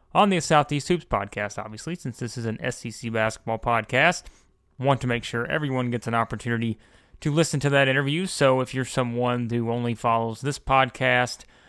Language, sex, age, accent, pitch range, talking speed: English, male, 30-49, American, 115-130 Hz, 180 wpm